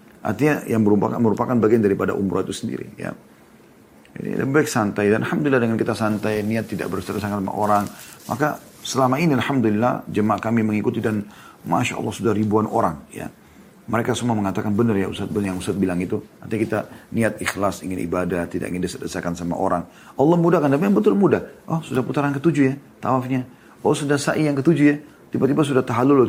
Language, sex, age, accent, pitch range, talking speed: Indonesian, male, 40-59, native, 95-125 Hz, 185 wpm